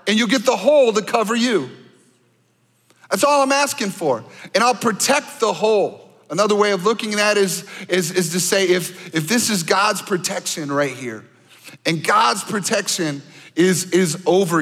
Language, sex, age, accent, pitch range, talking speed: English, male, 40-59, American, 185-260 Hz, 170 wpm